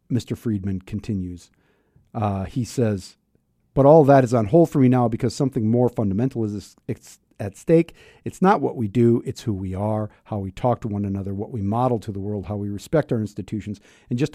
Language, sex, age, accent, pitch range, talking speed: English, male, 50-69, American, 110-145 Hz, 210 wpm